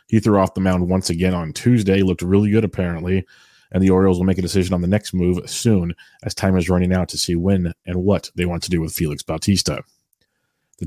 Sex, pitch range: male, 90-105 Hz